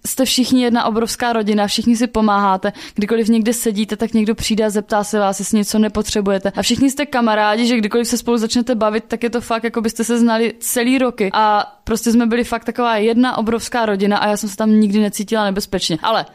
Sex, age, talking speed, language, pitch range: female, 20-39, 215 wpm, Slovak, 200-235 Hz